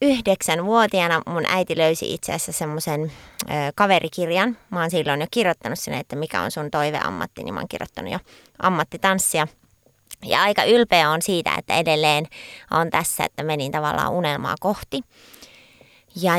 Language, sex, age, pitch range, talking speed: Finnish, female, 20-39, 150-195 Hz, 155 wpm